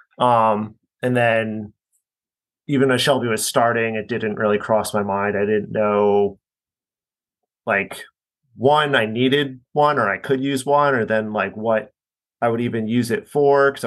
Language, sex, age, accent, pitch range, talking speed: English, male, 30-49, American, 110-125 Hz, 165 wpm